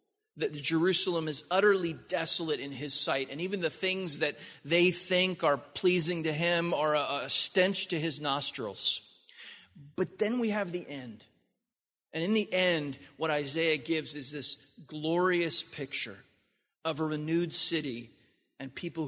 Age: 30-49